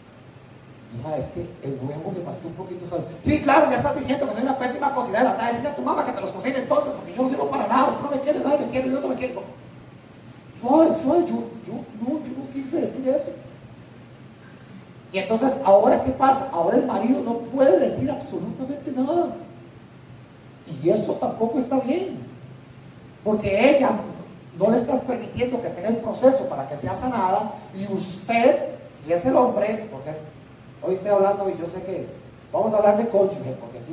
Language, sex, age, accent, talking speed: English, male, 40-59, Mexican, 190 wpm